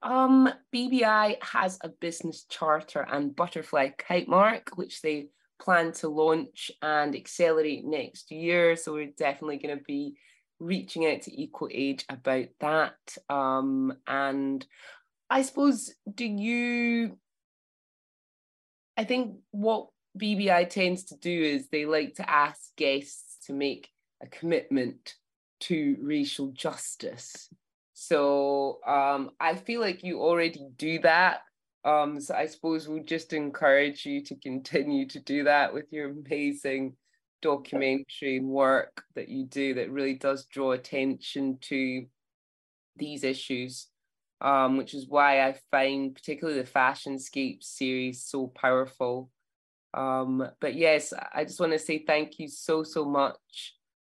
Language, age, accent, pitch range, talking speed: English, 20-39, British, 135-175 Hz, 135 wpm